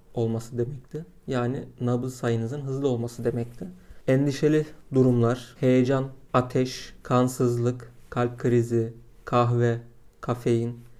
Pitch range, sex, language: 120-135 Hz, male, Turkish